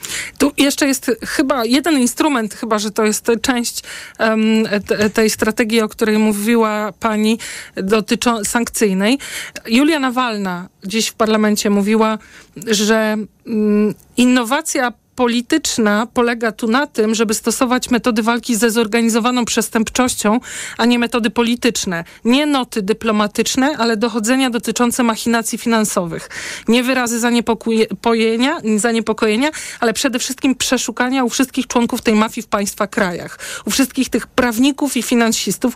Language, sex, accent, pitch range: Polish, male, native, 215-250 Hz